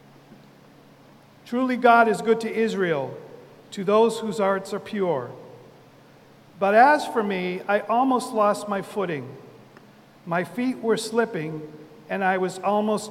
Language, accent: English, American